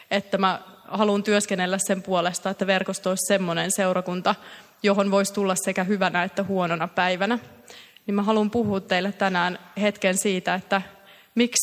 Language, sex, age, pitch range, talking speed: Finnish, female, 20-39, 185-210 Hz, 150 wpm